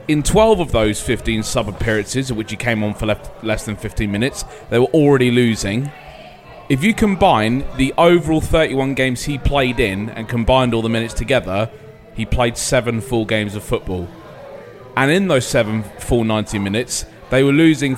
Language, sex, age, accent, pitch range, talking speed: English, male, 30-49, British, 110-135 Hz, 175 wpm